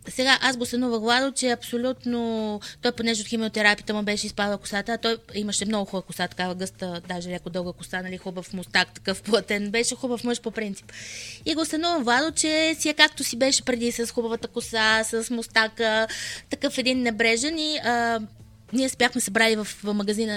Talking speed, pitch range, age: 185 wpm, 205-280 Hz, 20-39